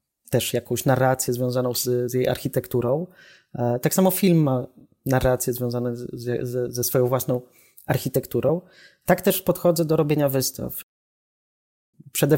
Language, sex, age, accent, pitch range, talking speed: Polish, male, 30-49, native, 125-155 Hz, 120 wpm